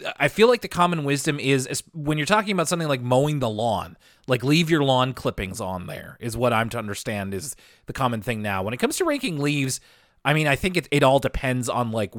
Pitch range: 110-150 Hz